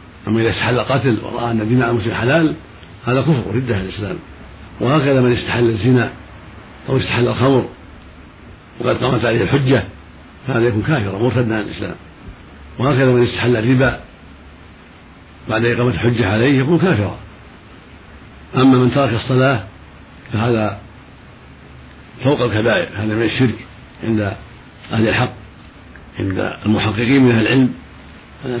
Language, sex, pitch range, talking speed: Arabic, male, 85-125 Hz, 125 wpm